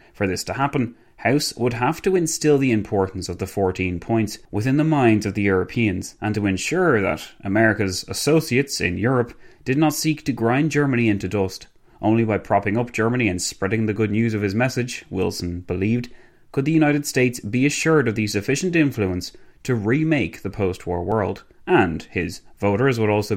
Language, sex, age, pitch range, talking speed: English, male, 30-49, 100-135 Hz, 185 wpm